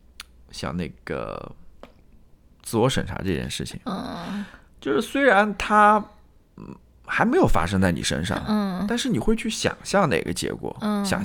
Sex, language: male, Chinese